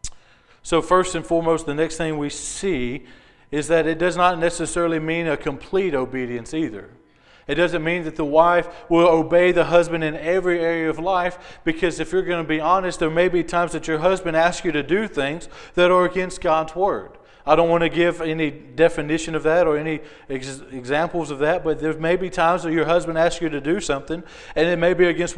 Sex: male